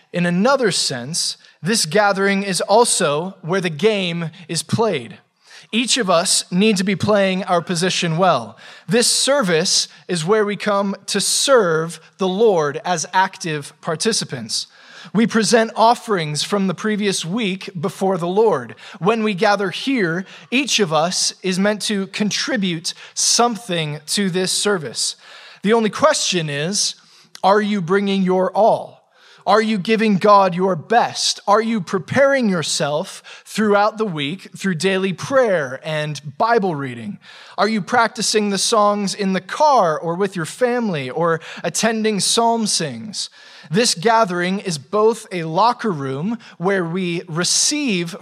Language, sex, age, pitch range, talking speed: English, male, 20-39, 175-215 Hz, 140 wpm